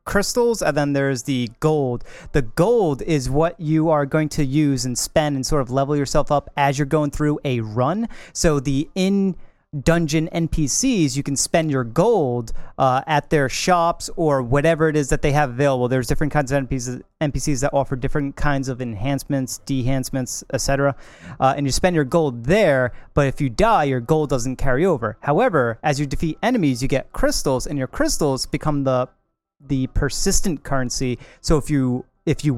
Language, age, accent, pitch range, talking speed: English, 30-49, American, 130-160 Hz, 190 wpm